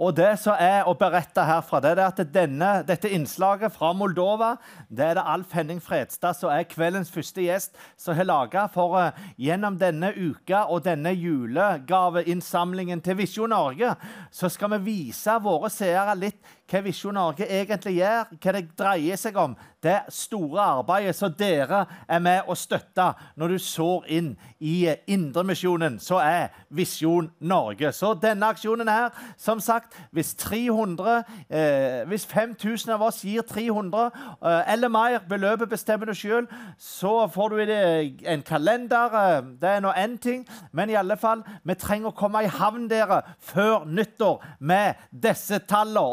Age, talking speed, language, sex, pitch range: 30-49, 160 wpm, English, male, 175-220 Hz